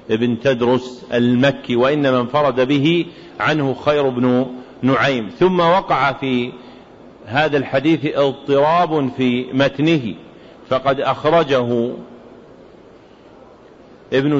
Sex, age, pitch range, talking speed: male, 40-59, 120-140 Hz, 90 wpm